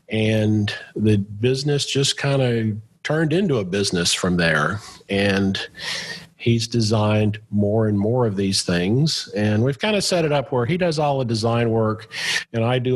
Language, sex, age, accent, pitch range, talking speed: English, male, 40-59, American, 100-125 Hz, 165 wpm